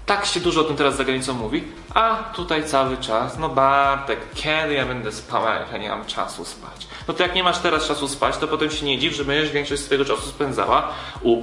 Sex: male